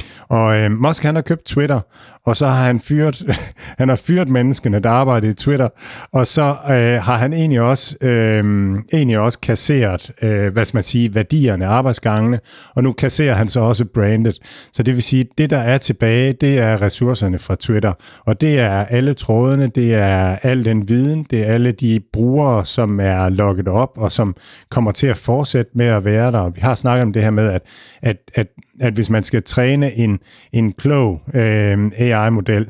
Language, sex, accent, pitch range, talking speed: Danish, male, native, 110-130 Hz, 195 wpm